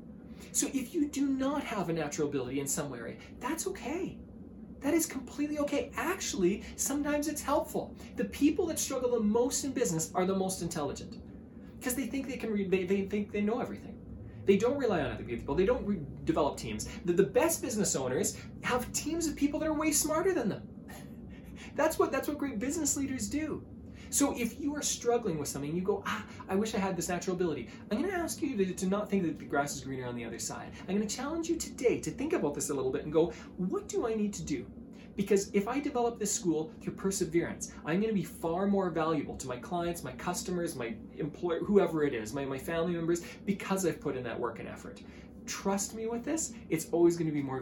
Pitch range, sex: 160-240 Hz, male